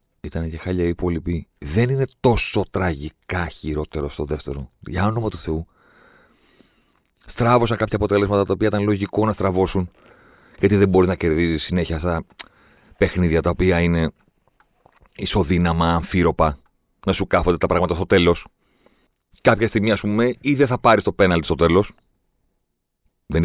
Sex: male